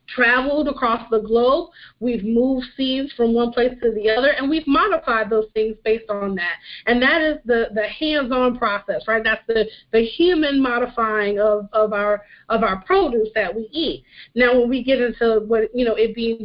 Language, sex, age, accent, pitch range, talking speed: English, female, 30-49, American, 220-245 Hz, 195 wpm